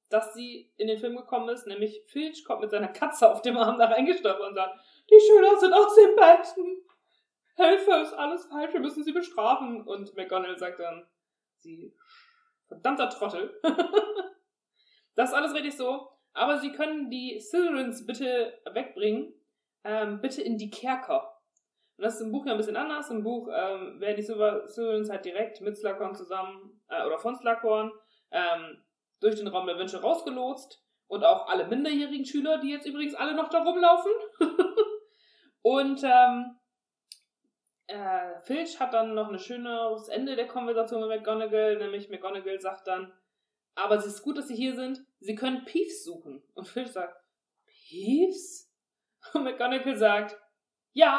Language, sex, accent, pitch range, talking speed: German, female, German, 215-335 Hz, 165 wpm